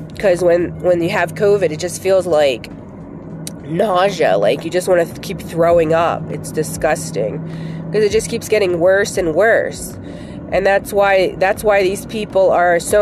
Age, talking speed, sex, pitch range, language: 30-49, 175 wpm, female, 165-205 Hz, English